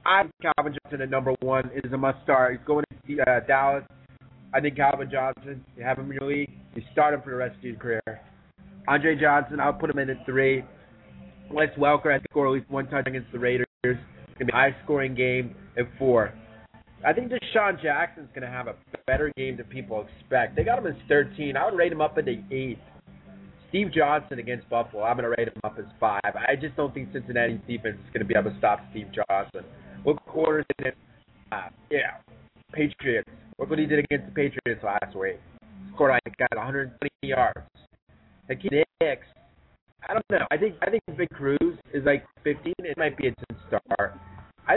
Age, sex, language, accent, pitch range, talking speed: 30-49, male, English, American, 125-150 Hz, 210 wpm